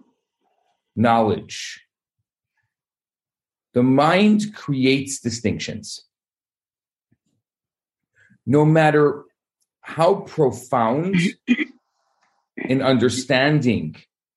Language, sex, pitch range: English, male, 115-160 Hz